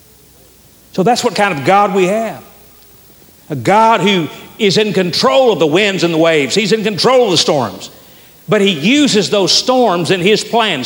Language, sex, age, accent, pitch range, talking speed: English, male, 50-69, American, 165-220 Hz, 190 wpm